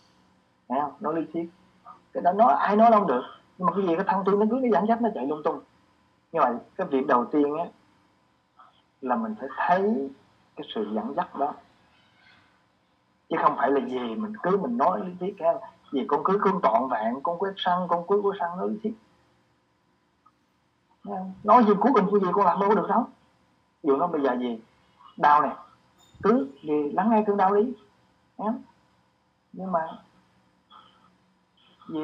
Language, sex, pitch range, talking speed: Vietnamese, male, 130-195 Hz, 185 wpm